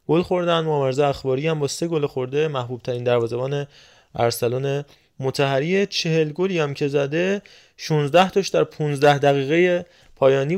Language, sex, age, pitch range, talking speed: Persian, male, 20-39, 130-160 Hz, 135 wpm